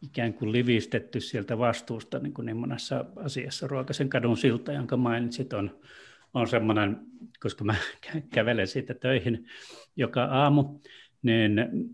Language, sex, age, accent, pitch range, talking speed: Finnish, male, 30-49, native, 115-140 Hz, 125 wpm